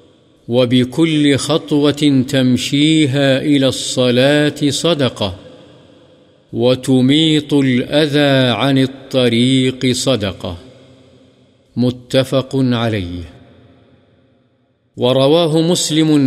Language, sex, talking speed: Urdu, male, 55 wpm